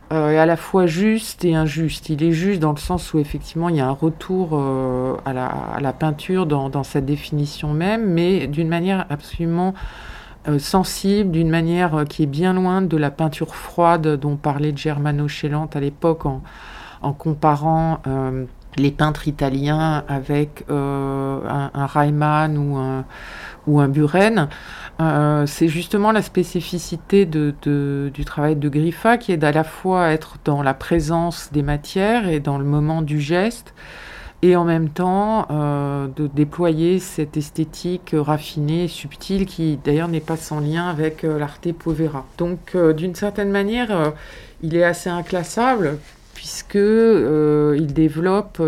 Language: French